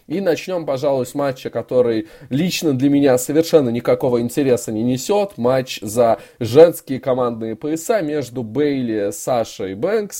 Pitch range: 115-150 Hz